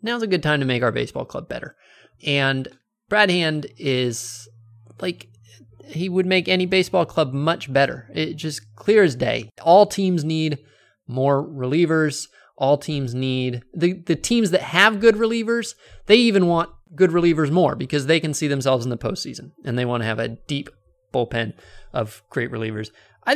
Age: 20-39